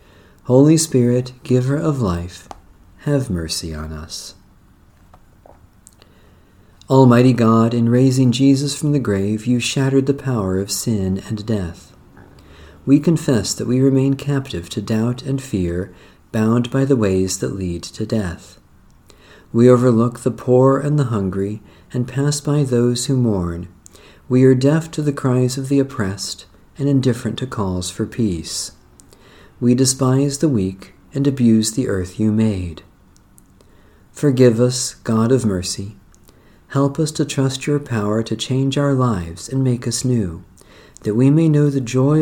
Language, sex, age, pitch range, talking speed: English, male, 40-59, 95-135 Hz, 150 wpm